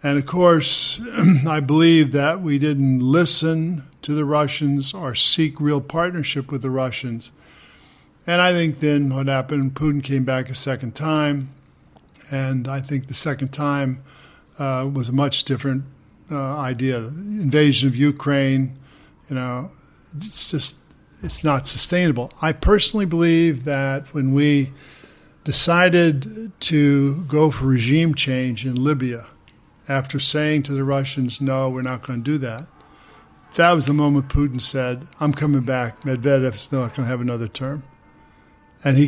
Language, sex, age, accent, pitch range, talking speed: English, male, 50-69, American, 135-150 Hz, 150 wpm